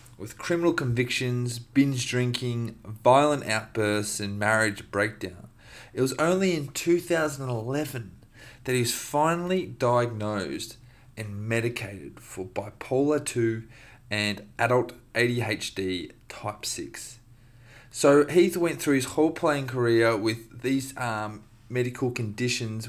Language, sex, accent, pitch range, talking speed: English, male, Australian, 105-120 Hz, 115 wpm